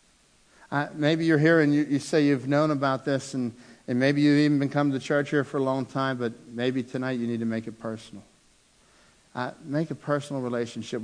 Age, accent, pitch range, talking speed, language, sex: 60-79, American, 110-145 Hz, 215 wpm, English, male